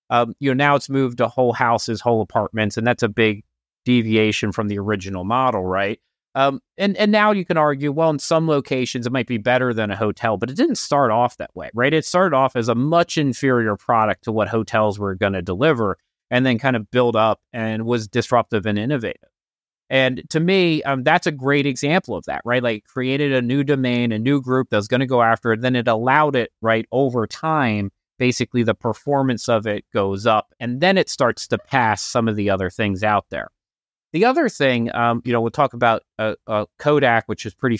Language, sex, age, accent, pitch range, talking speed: English, male, 30-49, American, 110-130 Hz, 220 wpm